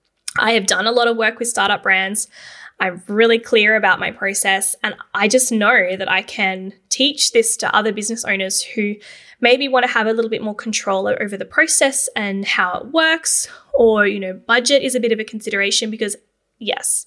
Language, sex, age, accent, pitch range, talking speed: English, female, 10-29, Australian, 210-265 Hz, 205 wpm